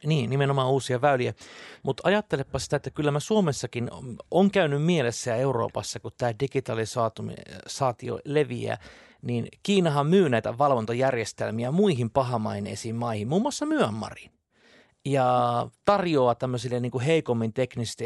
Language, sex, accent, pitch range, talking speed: Finnish, male, native, 115-145 Hz, 125 wpm